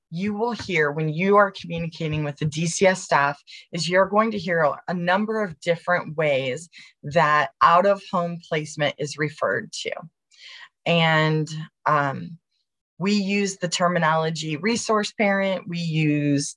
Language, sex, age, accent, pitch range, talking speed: English, female, 20-39, American, 160-205 Hz, 140 wpm